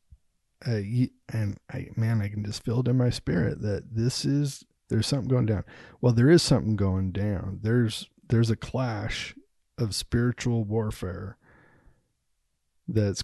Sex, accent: male, American